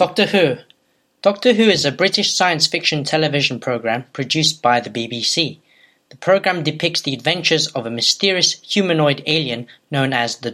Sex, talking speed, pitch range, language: male, 160 wpm, 135-170 Hz, English